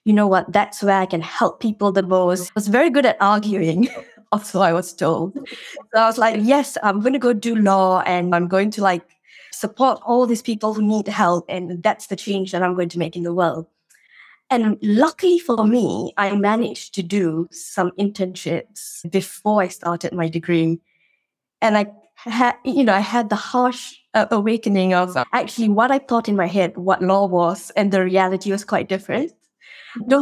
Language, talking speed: English, 200 wpm